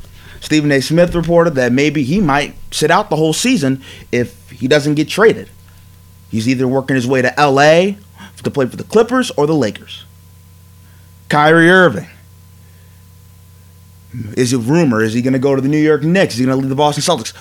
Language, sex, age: English, male, 30-49